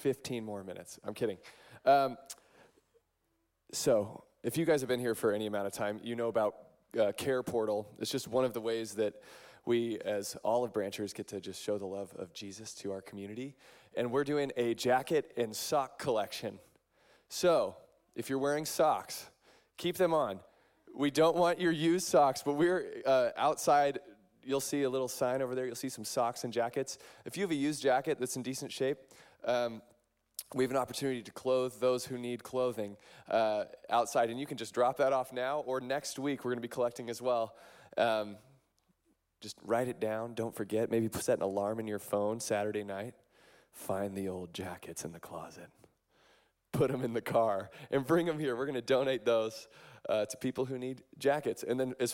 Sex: male